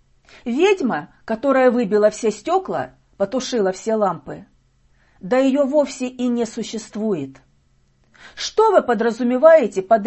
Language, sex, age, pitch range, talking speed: Russian, female, 40-59, 200-285 Hz, 105 wpm